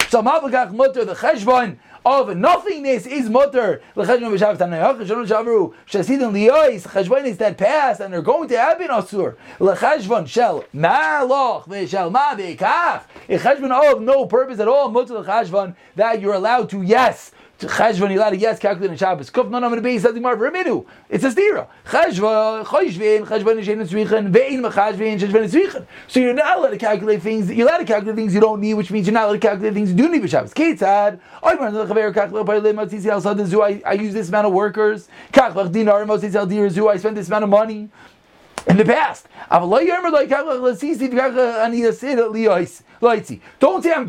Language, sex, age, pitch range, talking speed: English, male, 30-49, 210-260 Hz, 130 wpm